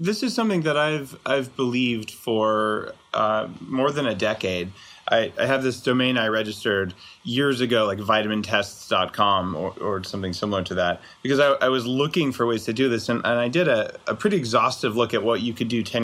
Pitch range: 105-125 Hz